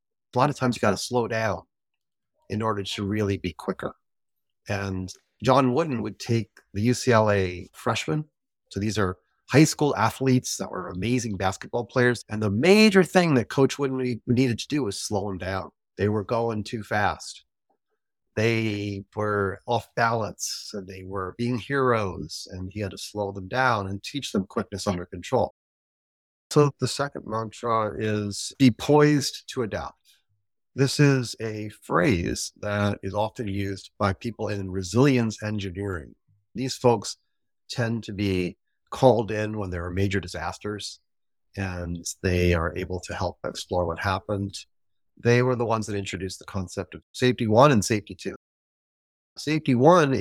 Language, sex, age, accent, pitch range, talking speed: English, male, 30-49, American, 95-120 Hz, 160 wpm